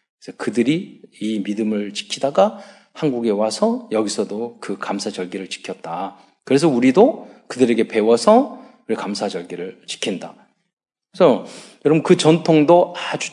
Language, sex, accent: Korean, male, native